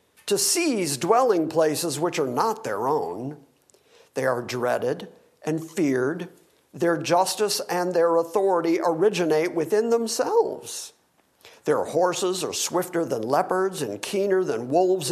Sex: male